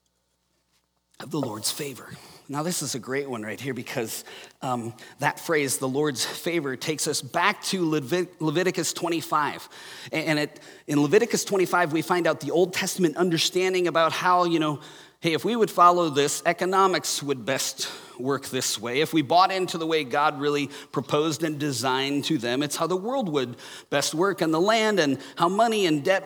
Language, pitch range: English, 145-185 Hz